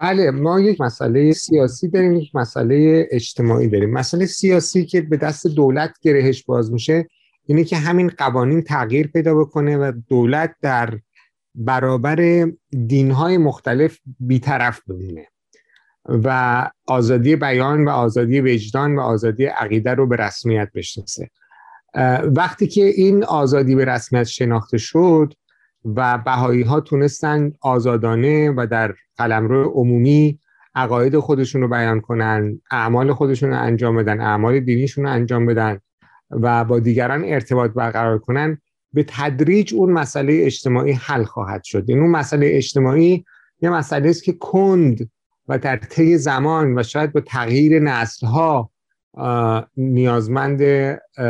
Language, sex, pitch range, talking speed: Persian, male, 120-155 Hz, 130 wpm